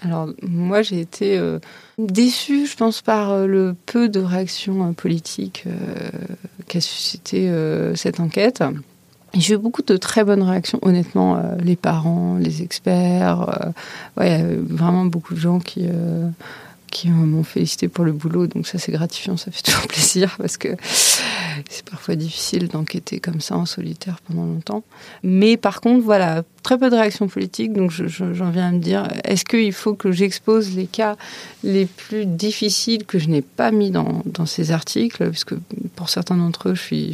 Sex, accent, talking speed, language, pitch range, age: female, French, 180 wpm, French, 165-200 Hz, 30-49